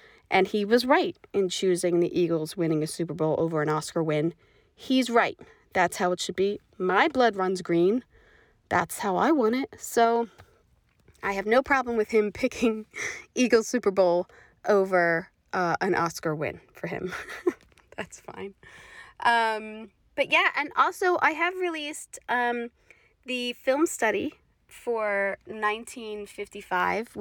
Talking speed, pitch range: 145 wpm, 185-250 Hz